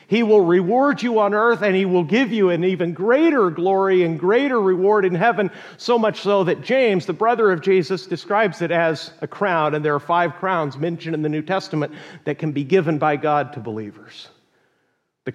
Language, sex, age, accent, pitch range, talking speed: English, male, 40-59, American, 160-195 Hz, 205 wpm